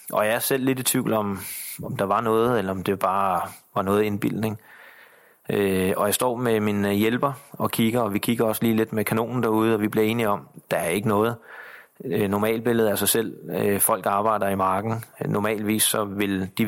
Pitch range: 100-115 Hz